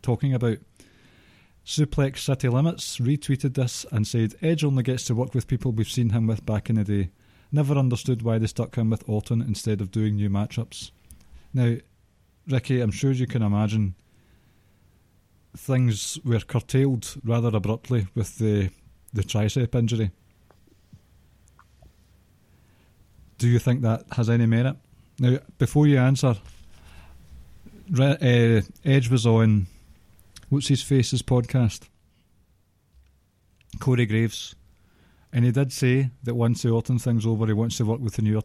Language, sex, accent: English, male, British